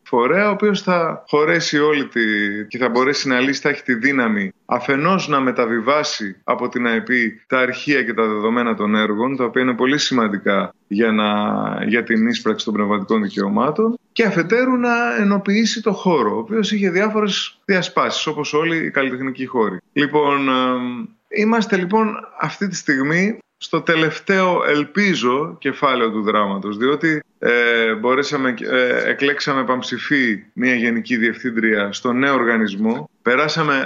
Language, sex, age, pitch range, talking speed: Greek, male, 20-39, 115-175 Hz, 150 wpm